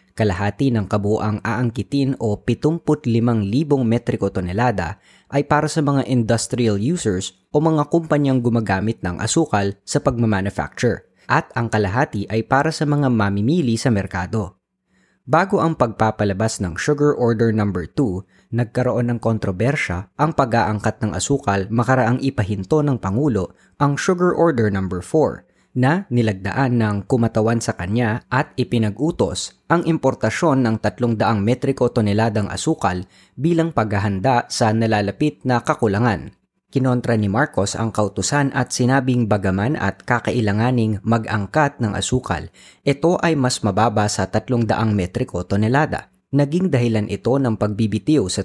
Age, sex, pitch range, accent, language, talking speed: 20-39, female, 105-140 Hz, native, Filipino, 135 wpm